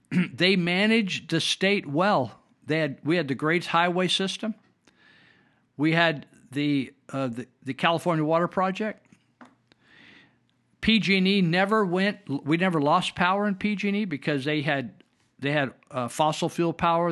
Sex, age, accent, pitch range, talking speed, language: male, 50-69, American, 145-185 Hz, 145 wpm, English